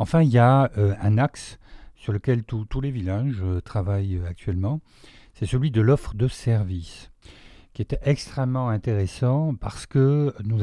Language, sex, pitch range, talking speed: French, male, 95-125 Hz, 150 wpm